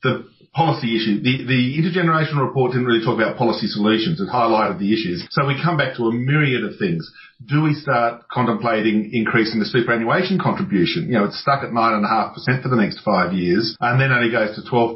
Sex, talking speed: male, 220 wpm